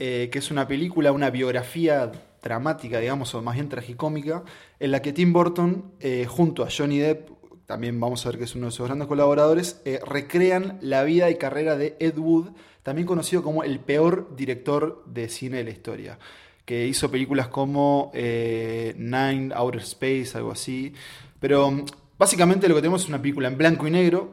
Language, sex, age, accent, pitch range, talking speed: Spanish, male, 20-39, Argentinian, 130-165 Hz, 185 wpm